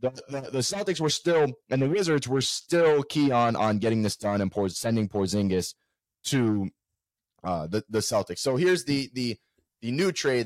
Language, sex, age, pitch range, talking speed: English, male, 30-49, 105-130 Hz, 190 wpm